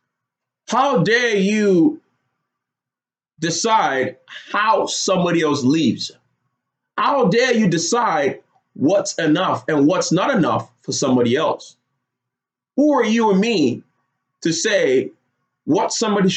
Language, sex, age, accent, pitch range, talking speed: English, male, 30-49, American, 150-245 Hz, 110 wpm